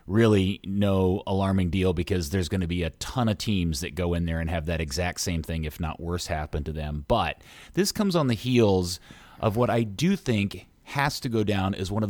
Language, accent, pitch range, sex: English, American, 90-120 Hz, male